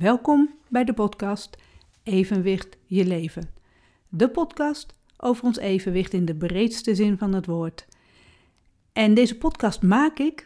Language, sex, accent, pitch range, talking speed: Dutch, female, Dutch, 185-255 Hz, 140 wpm